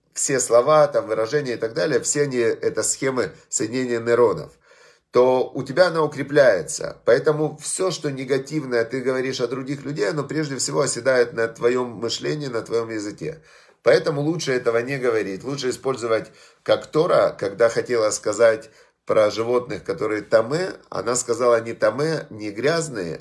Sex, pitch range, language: male, 115-150 Hz, Russian